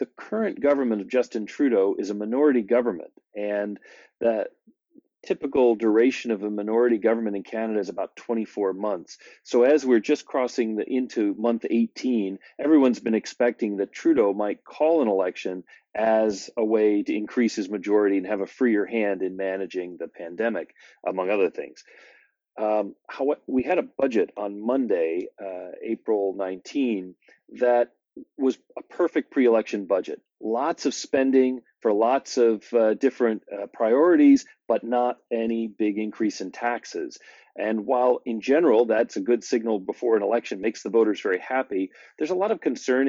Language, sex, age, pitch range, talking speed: English, male, 40-59, 105-130 Hz, 160 wpm